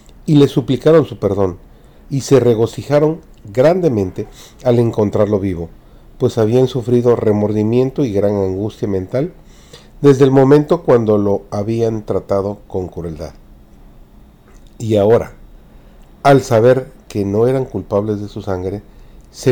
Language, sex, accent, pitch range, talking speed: Spanish, male, Mexican, 100-135 Hz, 125 wpm